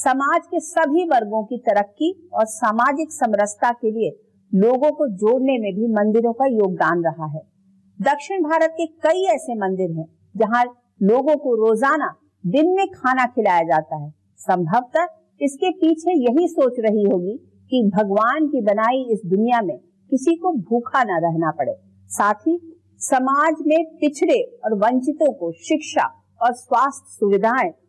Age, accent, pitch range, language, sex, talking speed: 50-69, Indian, 200-295 Hz, English, female, 125 wpm